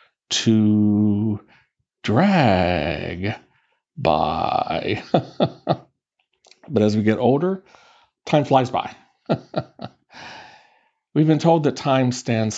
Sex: male